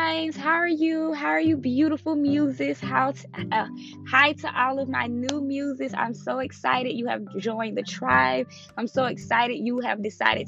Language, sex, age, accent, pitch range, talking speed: English, female, 10-29, American, 220-260 Hz, 170 wpm